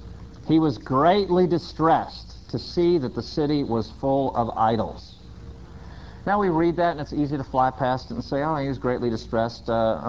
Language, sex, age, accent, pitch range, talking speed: English, male, 50-69, American, 110-155 Hz, 190 wpm